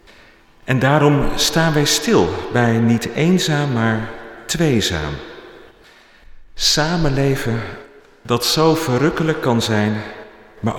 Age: 50-69